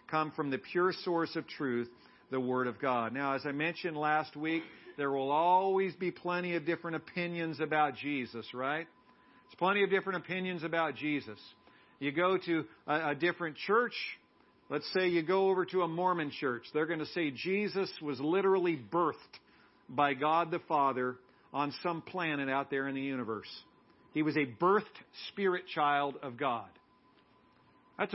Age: 50-69